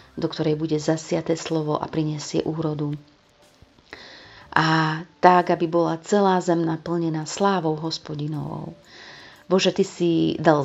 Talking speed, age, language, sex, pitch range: 120 wpm, 40-59, Slovak, female, 150-165 Hz